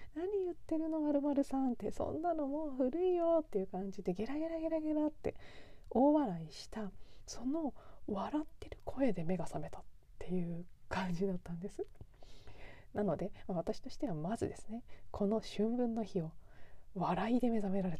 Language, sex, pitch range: Japanese, female, 190-280 Hz